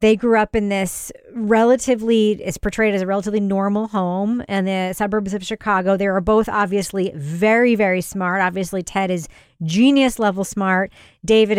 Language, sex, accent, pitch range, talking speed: English, female, American, 180-215 Hz, 165 wpm